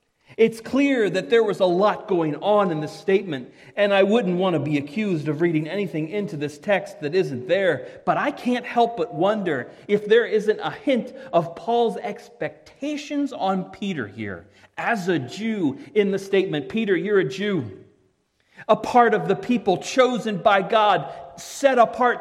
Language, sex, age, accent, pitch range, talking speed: English, male, 40-59, American, 180-260 Hz, 175 wpm